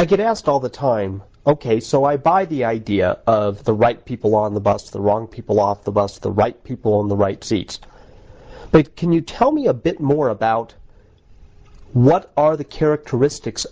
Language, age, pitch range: English, 40-59, 105-145 Hz